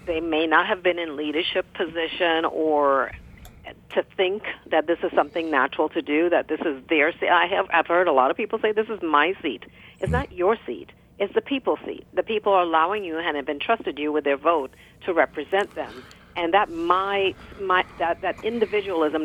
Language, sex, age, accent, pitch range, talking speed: English, female, 50-69, American, 155-190 Hz, 195 wpm